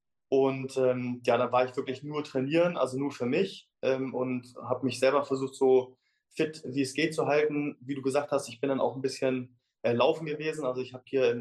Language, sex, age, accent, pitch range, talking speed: German, male, 20-39, German, 125-140 Hz, 230 wpm